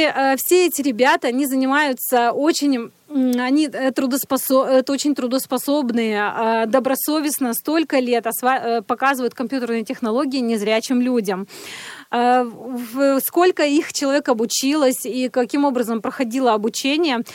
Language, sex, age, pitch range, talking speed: Russian, female, 20-39, 235-280 Hz, 90 wpm